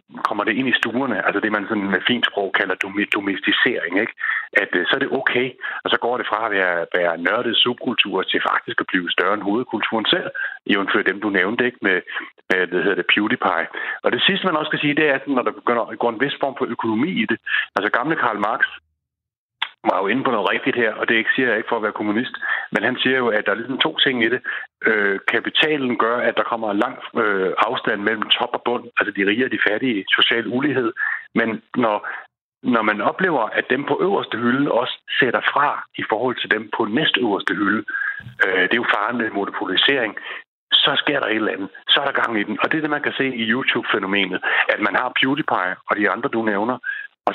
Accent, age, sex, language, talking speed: native, 60-79, male, Danish, 230 wpm